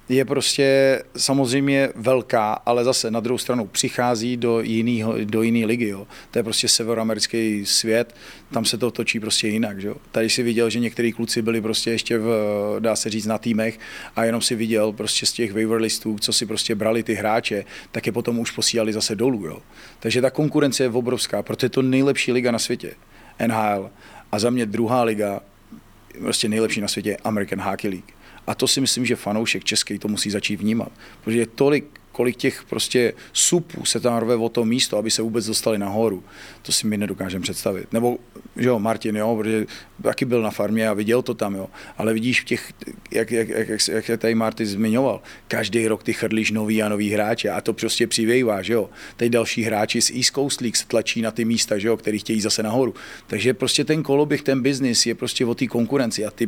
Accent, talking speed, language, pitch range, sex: native, 205 wpm, Czech, 110-120 Hz, male